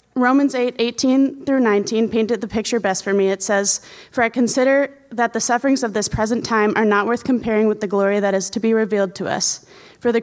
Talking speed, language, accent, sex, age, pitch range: 230 wpm, English, American, female, 20-39, 210-245 Hz